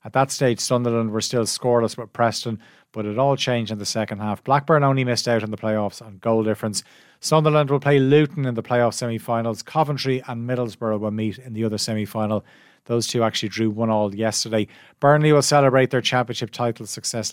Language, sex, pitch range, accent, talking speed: English, male, 110-130 Hz, Irish, 200 wpm